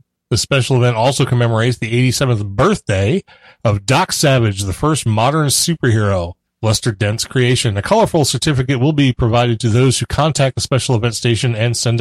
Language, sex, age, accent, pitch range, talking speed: English, male, 30-49, American, 110-150 Hz, 170 wpm